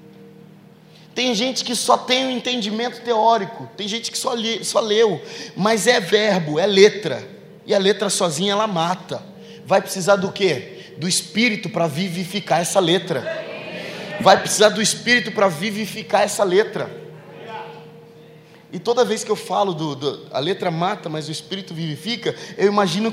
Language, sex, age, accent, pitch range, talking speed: Portuguese, male, 20-39, Brazilian, 160-215 Hz, 160 wpm